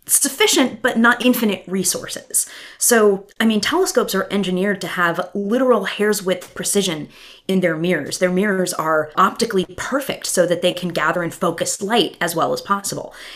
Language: English